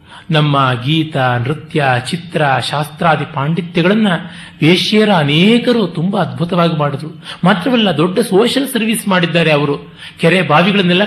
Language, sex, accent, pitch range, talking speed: Kannada, male, native, 150-195 Hz, 105 wpm